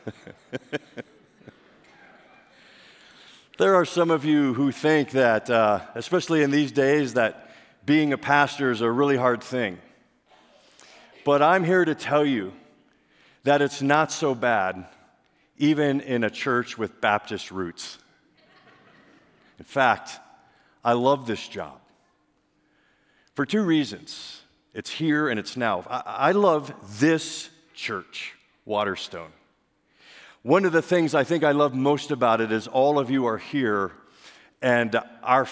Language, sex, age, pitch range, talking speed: English, male, 50-69, 120-155 Hz, 135 wpm